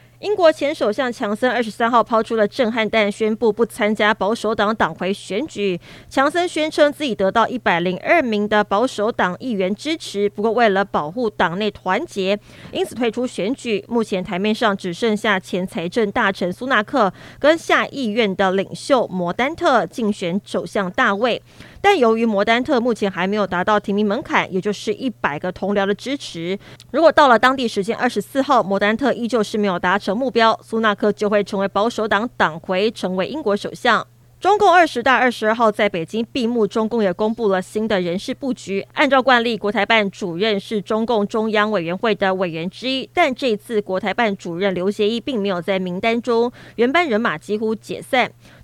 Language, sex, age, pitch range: Chinese, female, 20-39, 195-240 Hz